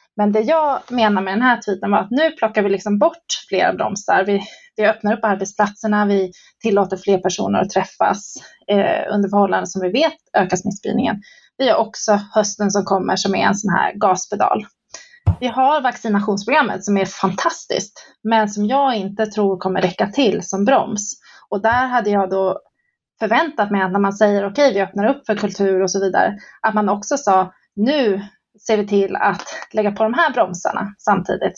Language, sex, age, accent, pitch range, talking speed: Swedish, female, 30-49, native, 200-250 Hz, 190 wpm